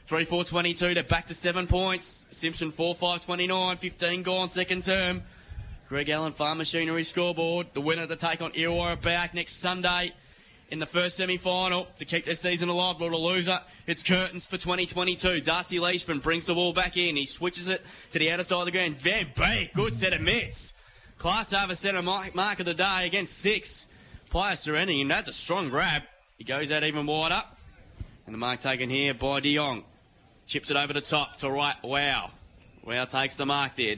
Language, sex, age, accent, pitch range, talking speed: English, male, 10-29, Australian, 160-190 Hz, 190 wpm